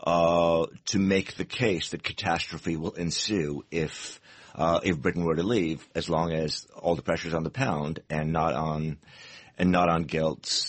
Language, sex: English, male